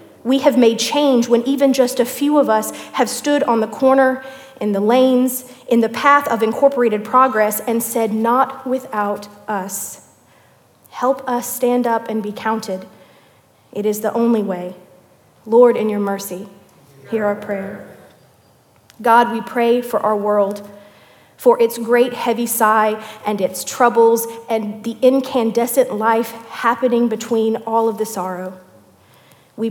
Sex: female